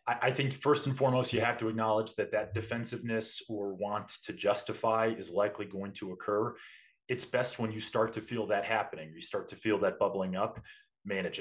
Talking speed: 200 wpm